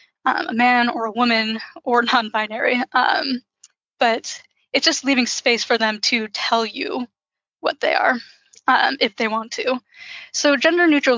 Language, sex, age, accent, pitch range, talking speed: English, female, 10-29, American, 230-265 Hz, 150 wpm